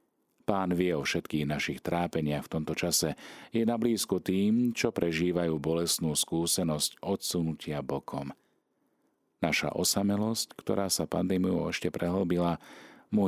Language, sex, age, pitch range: Slovak, male, 40-59, 75-95 Hz